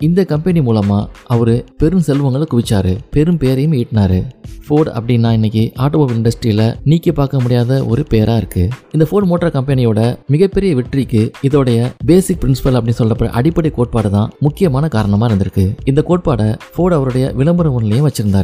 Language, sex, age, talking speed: Tamil, male, 20-39, 115 wpm